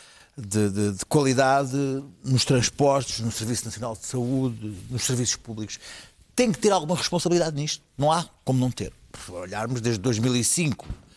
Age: 50-69